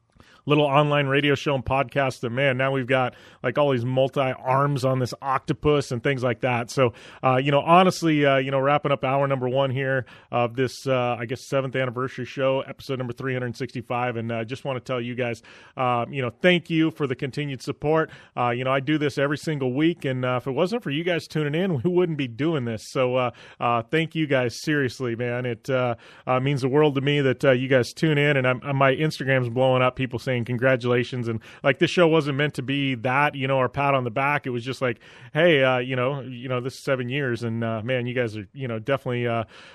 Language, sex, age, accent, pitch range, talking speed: English, male, 30-49, American, 125-150 Hz, 245 wpm